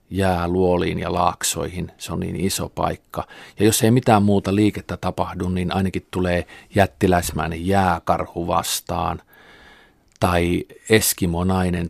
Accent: native